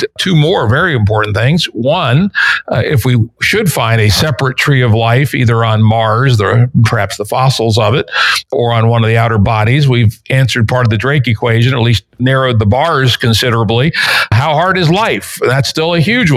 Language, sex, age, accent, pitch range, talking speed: English, male, 50-69, American, 115-145 Hz, 195 wpm